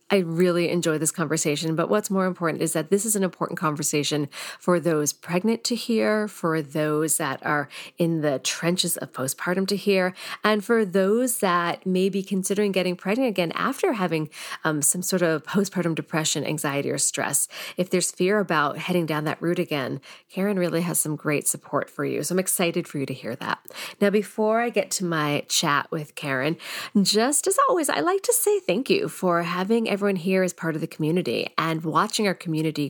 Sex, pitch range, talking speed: female, 160-210 Hz, 200 wpm